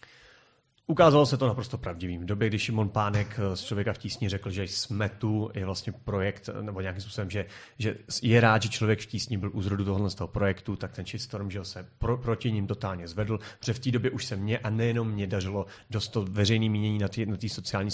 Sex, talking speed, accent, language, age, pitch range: male, 210 wpm, native, Czech, 30-49, 100-120 Hz